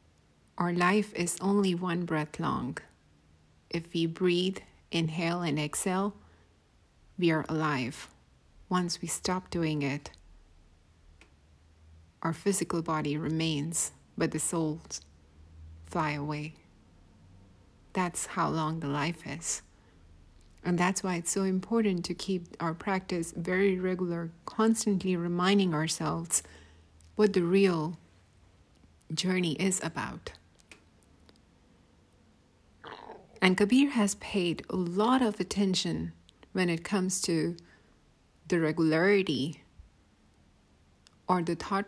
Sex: female